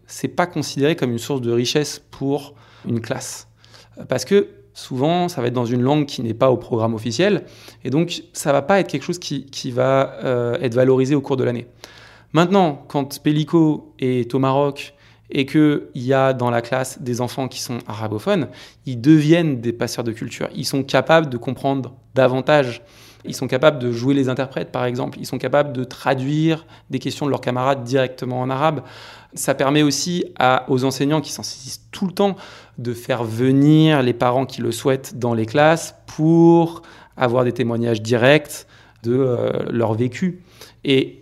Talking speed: 190 wpm